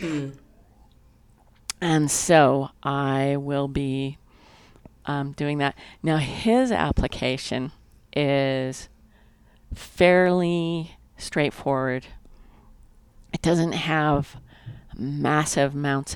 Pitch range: 130-155 Hz